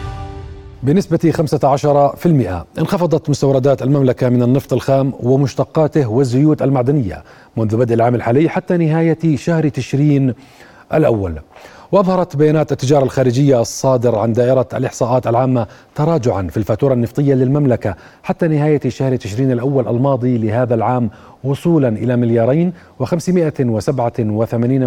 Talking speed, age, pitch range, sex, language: 115 wpm, 40-59, 120-150 Hz, male, Arabic